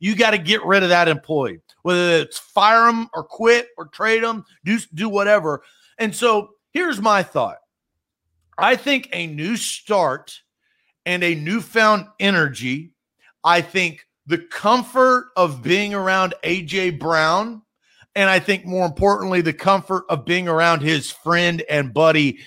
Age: 40-59